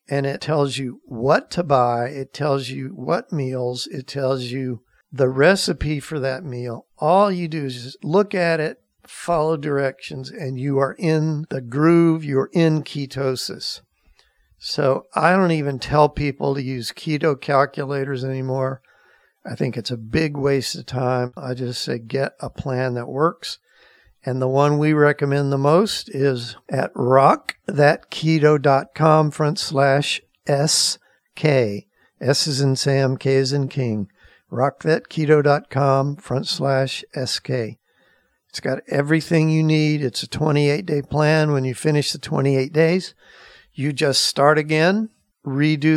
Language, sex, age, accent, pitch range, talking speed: English, male, 50-69, American, 135-155 Hz, 145 wpm